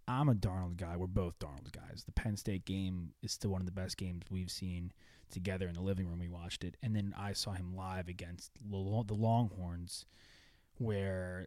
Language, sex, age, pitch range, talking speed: English, male, 20-39, 95-110 Hz, 205 wpm